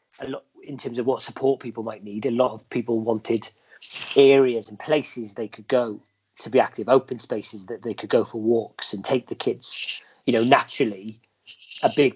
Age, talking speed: 40-59, 200 wpm